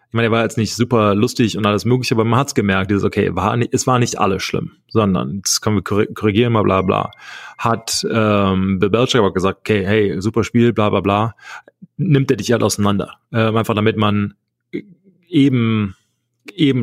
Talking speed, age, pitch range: 195 wpm, 30-49, 105-125 Hz